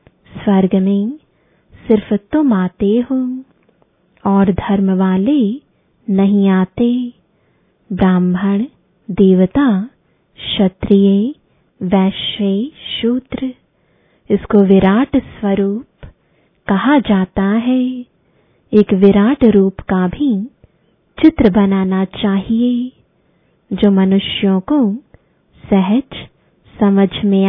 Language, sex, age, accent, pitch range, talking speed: English, female, 20-39, Indian, 195-245 Hz, 80 wpm